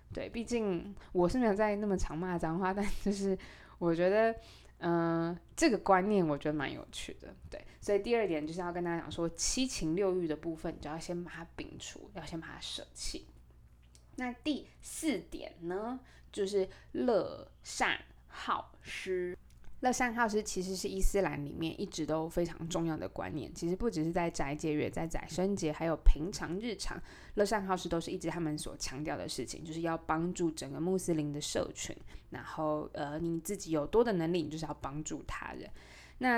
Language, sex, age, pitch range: Chinese, female, 20-39, 160-195 Hz